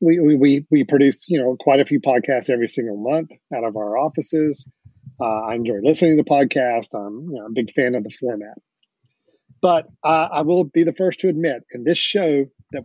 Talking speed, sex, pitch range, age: 215 wpm, male, 125-160 Hz, 40-59